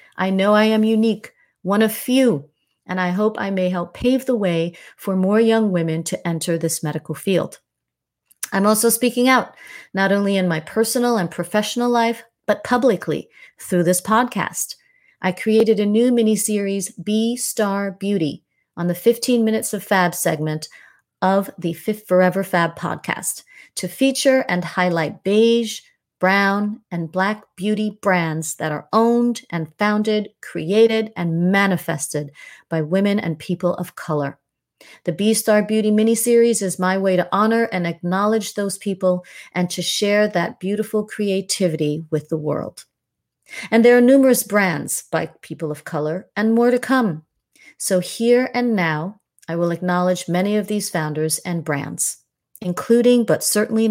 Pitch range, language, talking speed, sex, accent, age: 175-220 Hz, English, 155 wpm, female, American, 30-49